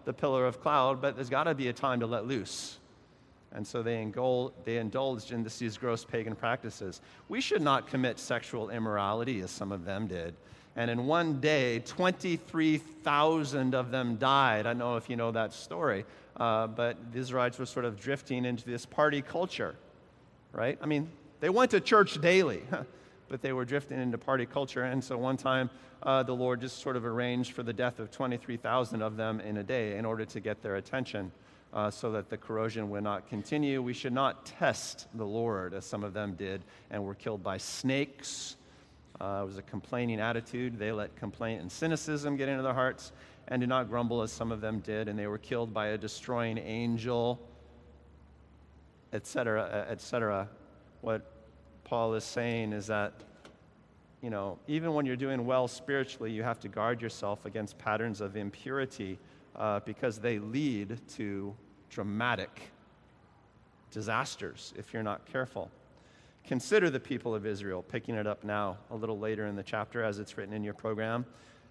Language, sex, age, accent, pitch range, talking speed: English, male, 40-59, American, 105-130 Hz, 185 wpm